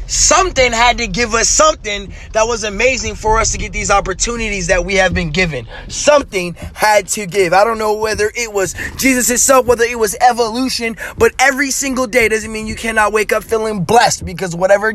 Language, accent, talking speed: English, American, 200 wpm